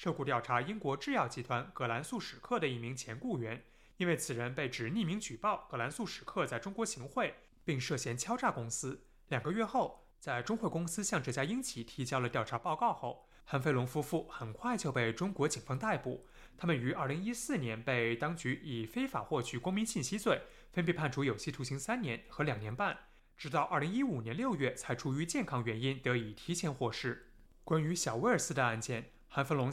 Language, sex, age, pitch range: Chinese, male, 20-39, 120-175 Hz